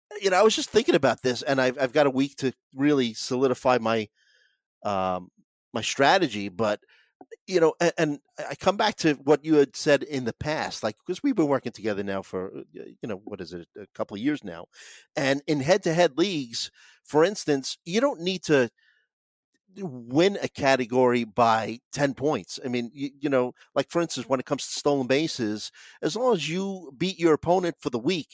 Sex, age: male, 40-59